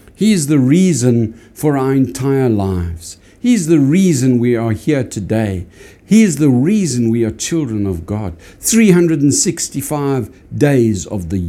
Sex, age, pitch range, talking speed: male, 60-79, 95-140 Hz, 150 wpm